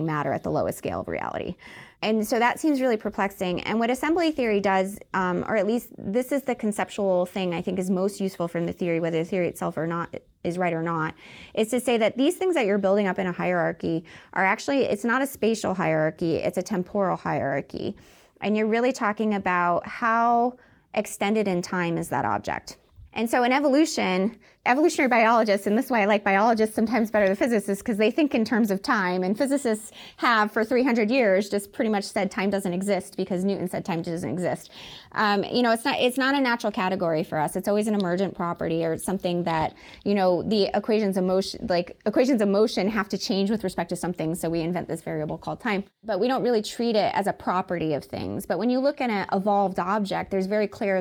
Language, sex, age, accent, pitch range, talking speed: English, female, 20-39, American, 180-225 Hz, 225 wpm